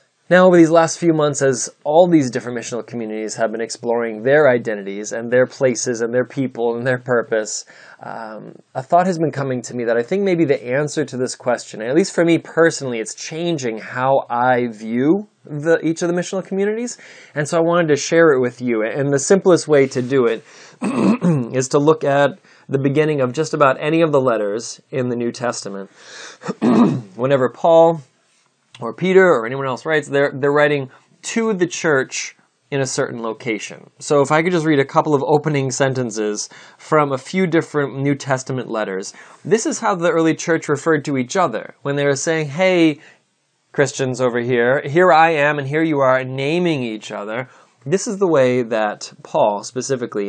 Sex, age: male, 20-39